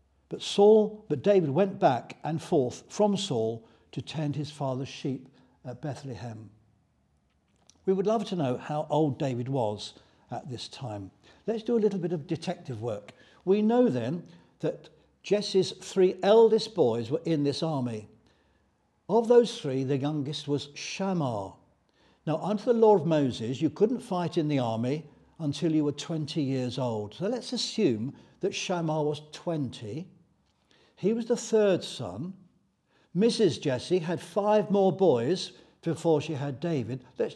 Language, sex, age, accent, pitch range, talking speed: English, male, 60-79, British, 130-190 Hz, 155 wpm